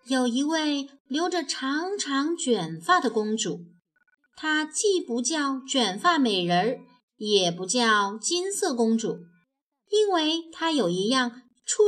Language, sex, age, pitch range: Chinese, female, 30-49, 220-330 Hz